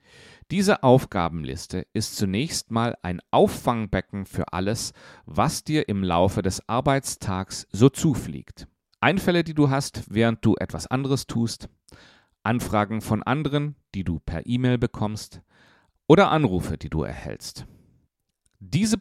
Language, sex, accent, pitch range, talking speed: German, male, German, 95-135 Hz, 125 wpm